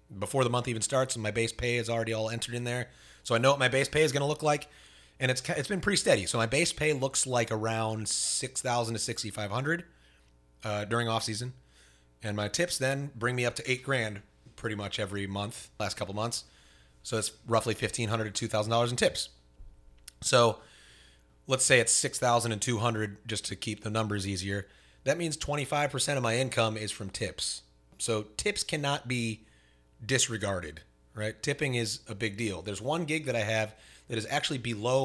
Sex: male